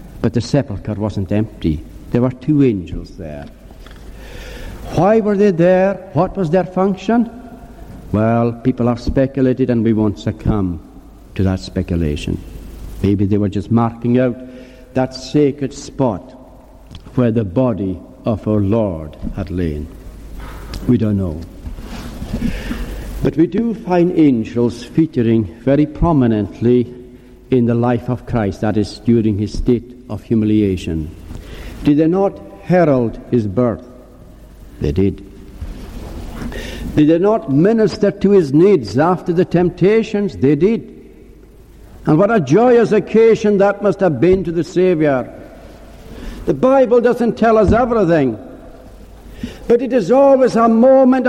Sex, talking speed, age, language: male, 130 wpm, 60-79, English